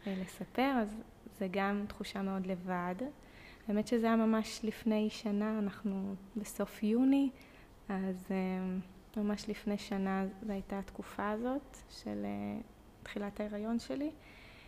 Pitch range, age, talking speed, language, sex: 190-220 Hz, 20-39, 115 wpm, Hebrew, female